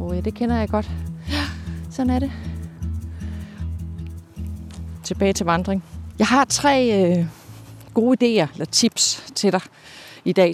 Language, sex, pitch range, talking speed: Danish, female, 150-215 Hz, 140 wpm